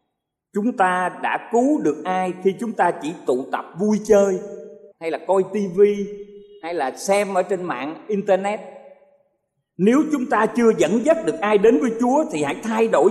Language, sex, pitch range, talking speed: Vietnamese, male, 170-230 Hz, 185 wpm